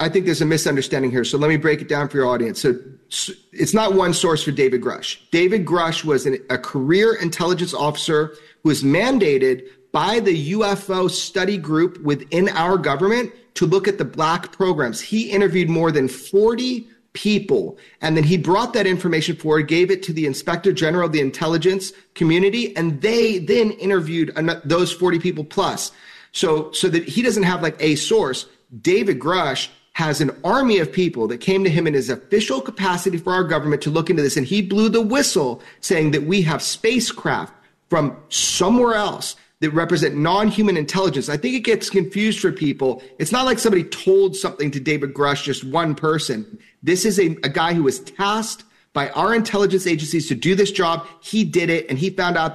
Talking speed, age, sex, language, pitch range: 190 wpm, 30-49, male, English, 155-200 Hz